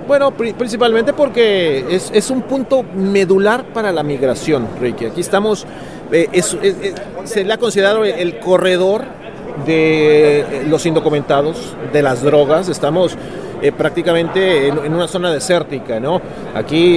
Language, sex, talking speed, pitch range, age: Spanish, male, 150 wpm, 140-190 Hz, 40-59